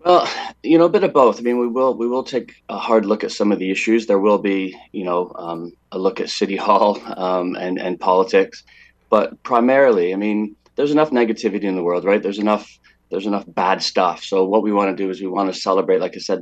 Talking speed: 250 wpm